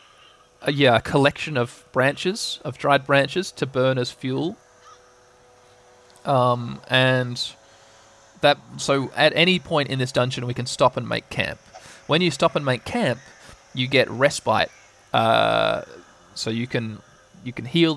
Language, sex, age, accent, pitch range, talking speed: English, male, 20-39, Australian, 115-140 Hz, 145 wpm